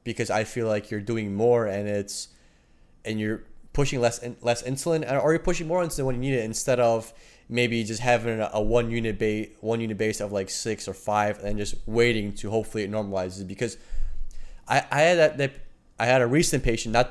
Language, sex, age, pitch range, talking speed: English, male, 20-39, 105-125 Hz, 215 wpm